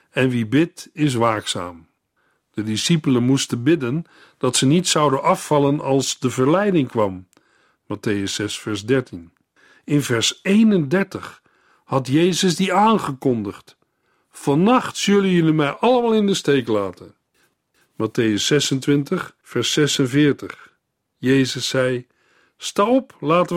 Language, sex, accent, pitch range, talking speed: Dutch, male, Dutch, 115-165 Hz, 120 wpm